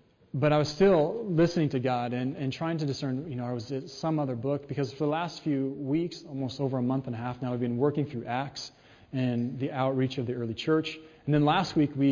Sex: male